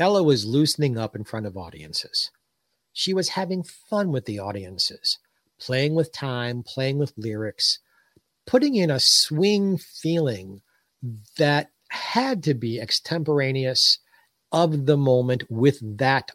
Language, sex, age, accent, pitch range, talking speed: English, male, 50-69, American, 120-170 Hz, 130 wpm